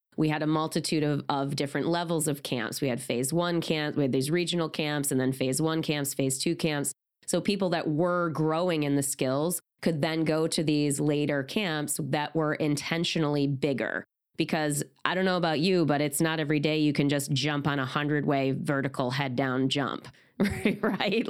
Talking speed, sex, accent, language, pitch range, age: 200 wpm, female, American, English, 145-175 Hz, 20-39